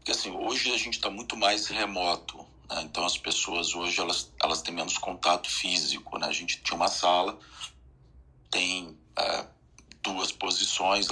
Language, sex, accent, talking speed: Portuguese, male, Brazilian, 160 wpm